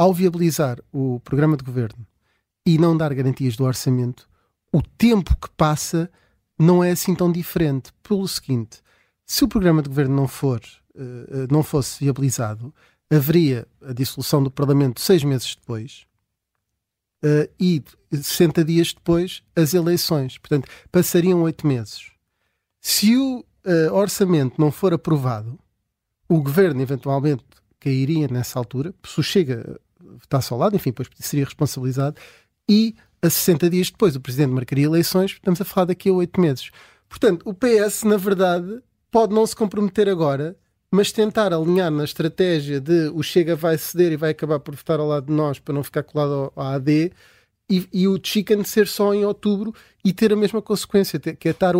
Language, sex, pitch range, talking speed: Portuguese, male, 140-195 Hz, 165 wpm